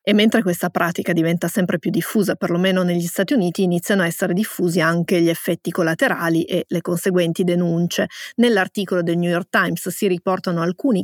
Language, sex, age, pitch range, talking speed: Italian, female, 30-49, 175-195 Hz, 175 wpm